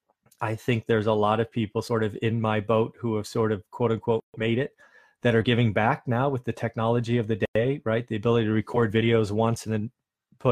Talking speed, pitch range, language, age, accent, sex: 235 wpm, 110-135 Hz, English, 30-49, American, male